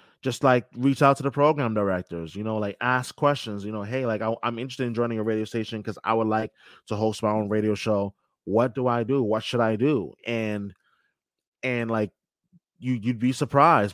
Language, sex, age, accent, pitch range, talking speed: English, male, 20-39, American, 105-125 Hz, 220 wpm